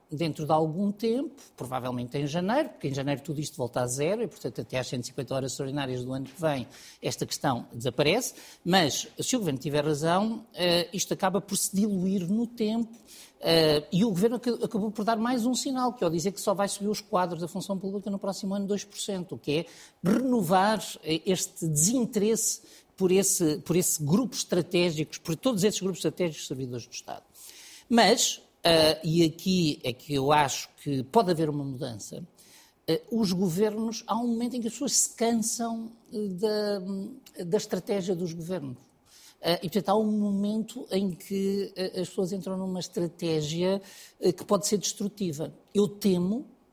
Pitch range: 160-215 Hz